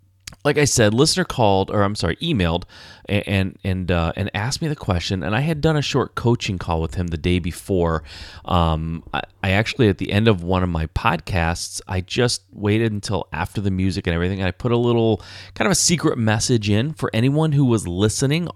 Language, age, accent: English, 30-49, American